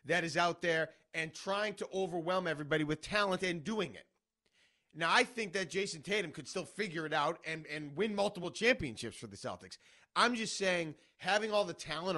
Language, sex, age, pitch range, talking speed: English, male, 30-49, 160-205 Hz, 195 wpm